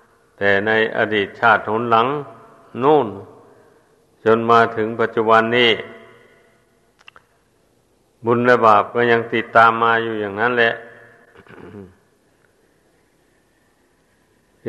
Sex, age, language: male, 60-79, Thai